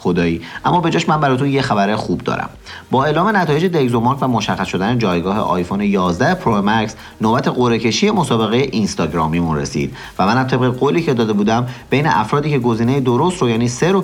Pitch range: 110-145 Hz